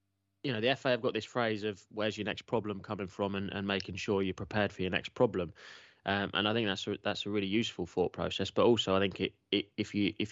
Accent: British